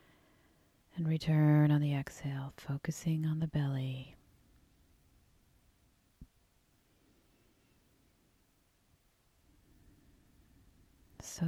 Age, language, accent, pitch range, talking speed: 30-49, English, American, 115-165 Hz, 50 wpm